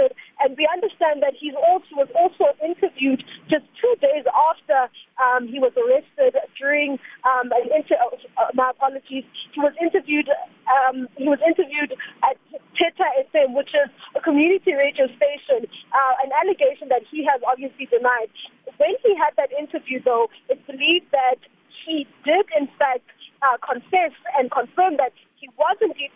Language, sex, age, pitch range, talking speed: English, female, 20-39, 260-320 Hz, 145 wpm